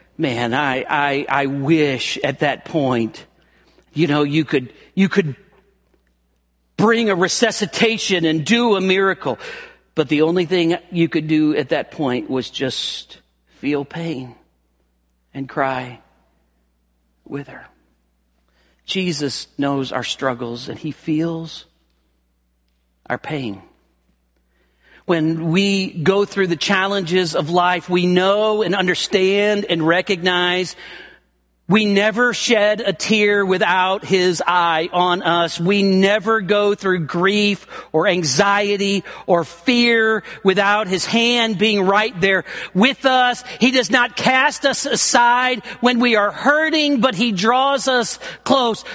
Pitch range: 155-235 Hz